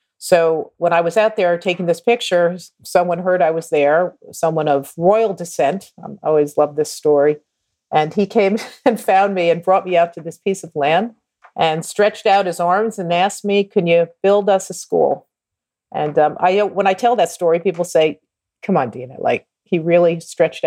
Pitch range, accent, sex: 150-200 Hz, American, female